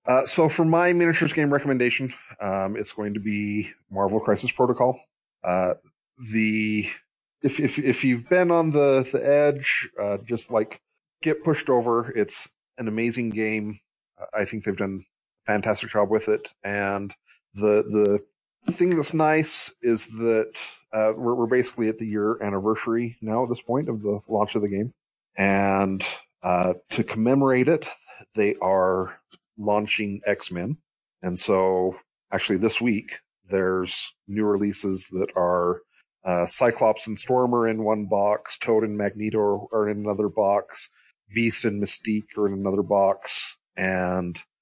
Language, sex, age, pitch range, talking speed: English, male, 30-49, 100-125 Hz, 150 wpm